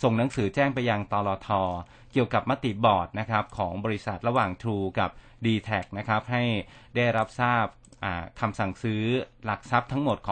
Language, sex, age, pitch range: Thai, male, 30-49, 100-125 Hz